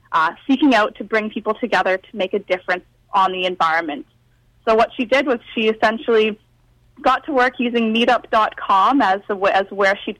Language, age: English, 20-39